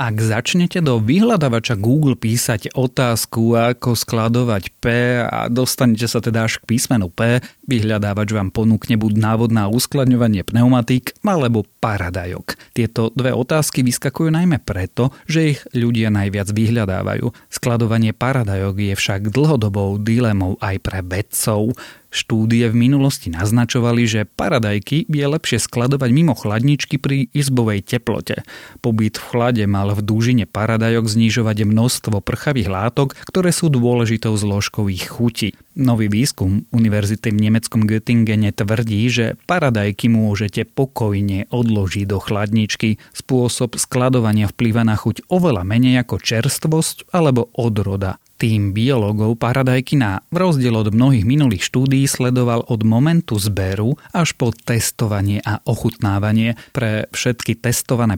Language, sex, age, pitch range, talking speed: Slovak, male, 30-49, 105-125 Hz, 130 wpm